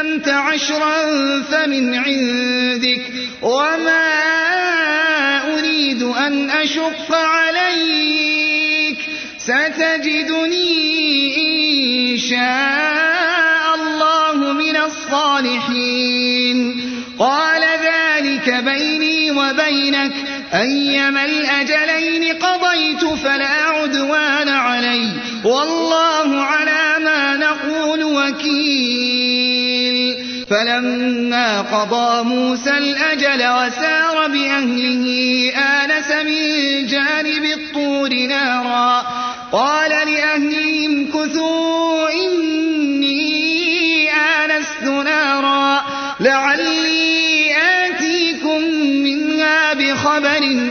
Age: 30-49